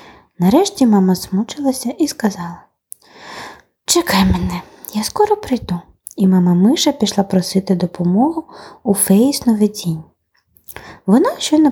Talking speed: 100 wpm